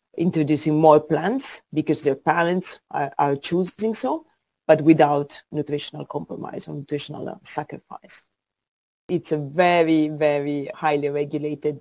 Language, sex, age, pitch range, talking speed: English, female, 40-59, 140-160 Hz, 115 wpm